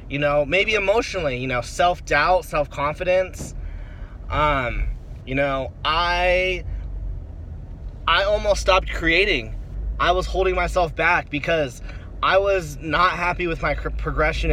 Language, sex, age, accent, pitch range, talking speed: English, male, 20-39, American, 115-180 Hz, 120 wpm